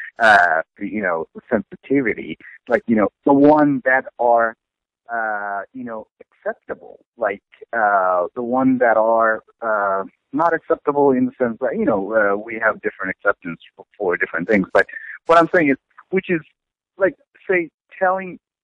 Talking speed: 155 wpm